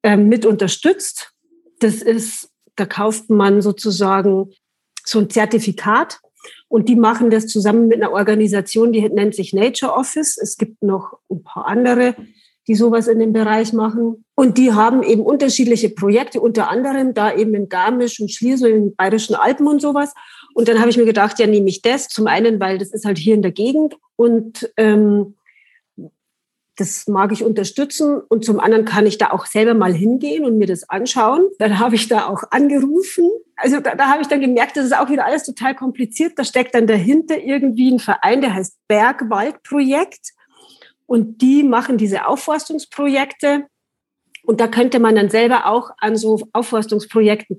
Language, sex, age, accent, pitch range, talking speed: German, female, 40-59, German, 215-265 Hz, 180 wpm